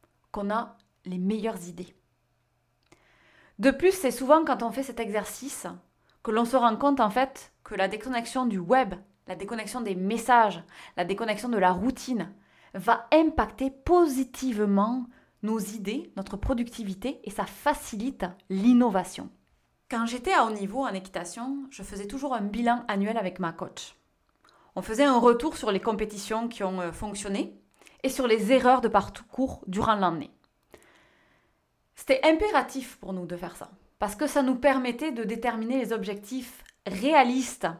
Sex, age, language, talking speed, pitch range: female, 20-39, French, 155 wpm, 200-260 Hz